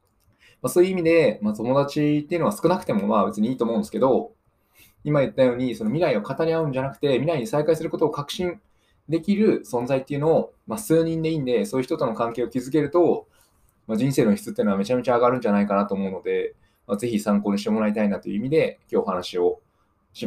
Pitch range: 115-175 Hz